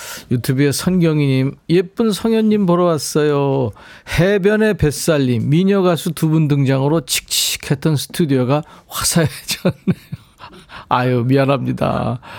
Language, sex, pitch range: Korean, male, 115-165 Hz